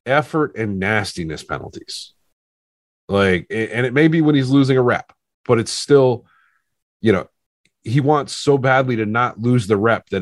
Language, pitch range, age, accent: English, 100-135 Hz, 30-49, American